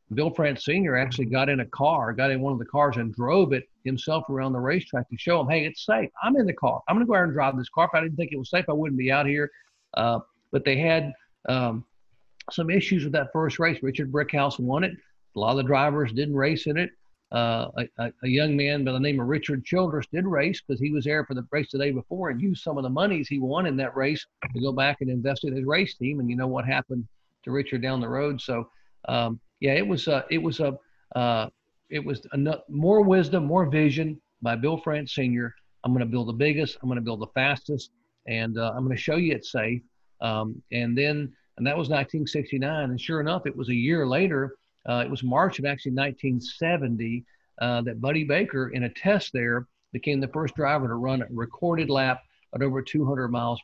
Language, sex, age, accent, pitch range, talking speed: English, male, 50-69, American, 125-155 Hz, 240 wpm